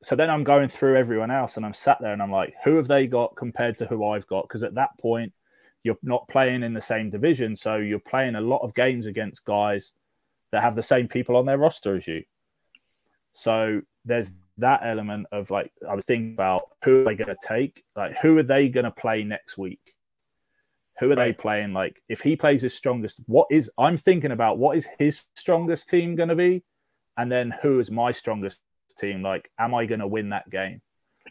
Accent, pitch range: British, 110-145 Hz